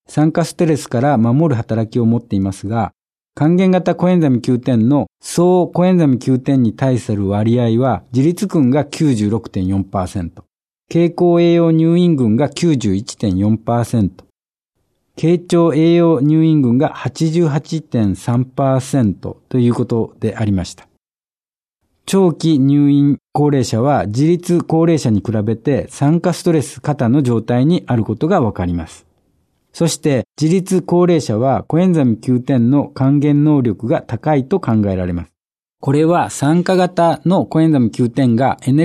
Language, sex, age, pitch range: Japanese, male, 60-79, 115-160 Hz